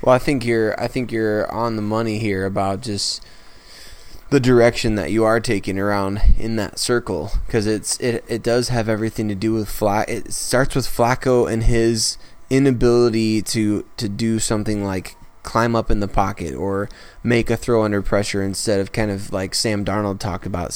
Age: 20-39